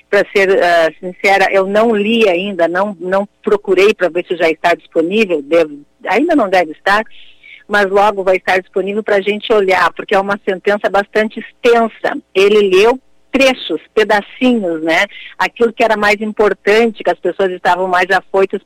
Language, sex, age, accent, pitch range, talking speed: Portuguese, female, 50-69, Brazilian, 190-260 Hz, 165 wpm